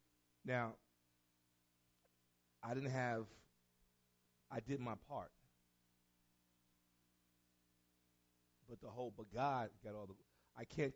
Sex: male